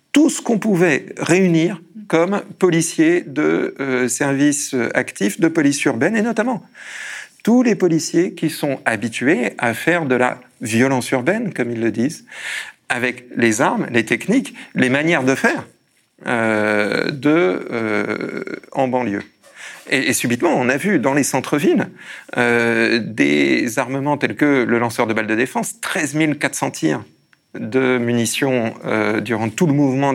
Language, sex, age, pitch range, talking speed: French, male, 40-59, 120-165 Hz, 150 wpm